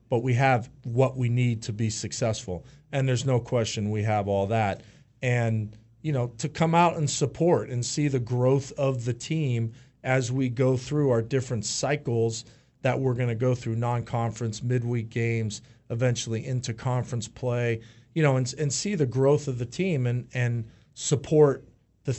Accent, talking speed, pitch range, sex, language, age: American, 180 wpm, 115-135 Hz, male, English, 40-59